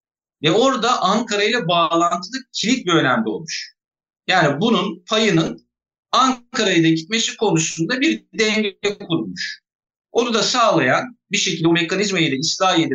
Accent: native